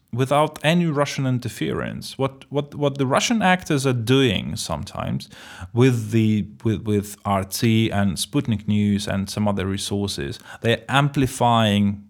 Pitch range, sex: 105-130 Hz, male